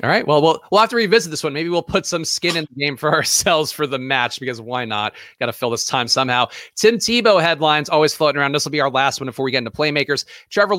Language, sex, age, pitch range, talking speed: English, male, 30-49, 135-180 Hz, 285 wpm